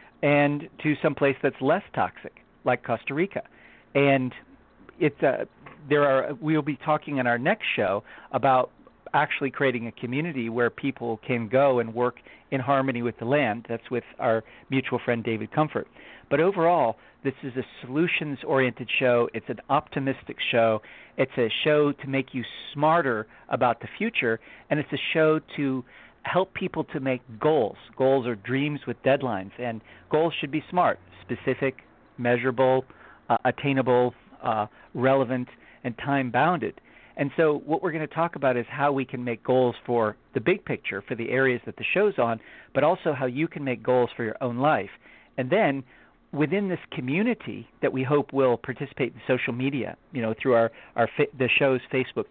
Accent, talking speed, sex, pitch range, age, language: American, 175 wpm, male, 120-150 Hz, 50-69, English